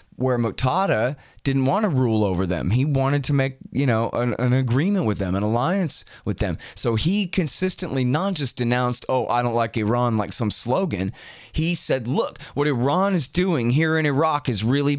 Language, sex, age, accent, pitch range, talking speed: English, male, 30-49, American, 105-150 Hz, 195 wpm